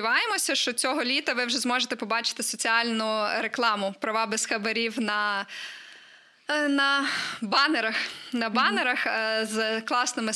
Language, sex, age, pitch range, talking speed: Ukrainian, female, 20-39, 230-295 Hz, 110 wpm